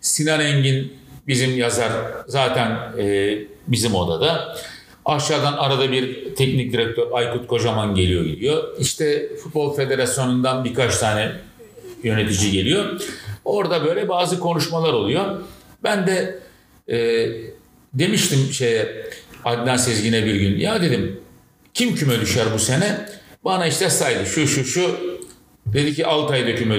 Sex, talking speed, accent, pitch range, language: male, 125 wpm, native, 120-170 Hz, Turkish